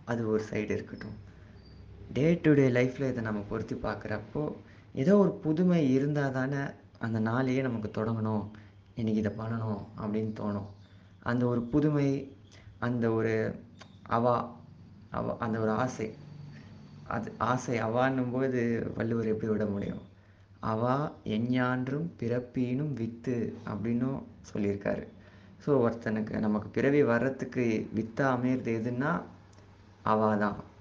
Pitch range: 105-130 Hz